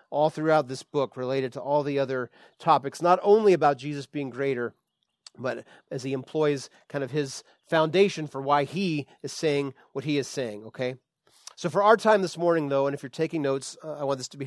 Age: 30-49